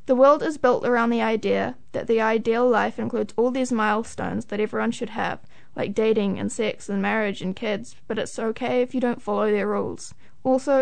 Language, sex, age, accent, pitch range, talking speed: English, female, 10-29, Australian, 220-255 Hz, 205 wpm